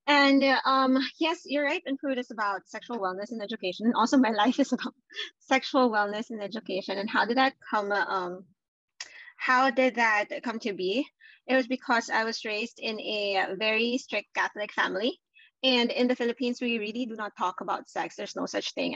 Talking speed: 195 wpm